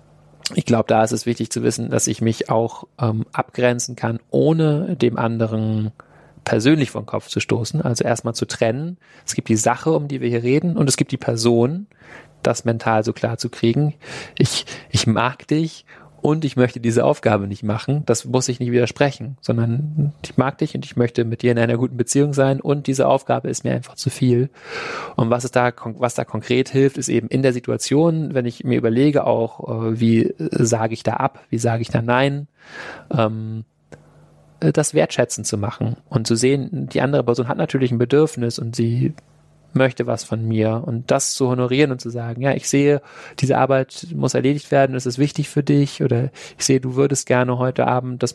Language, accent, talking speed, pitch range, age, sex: German, German, 200 wpm, 115-140 Hz, 30-49, male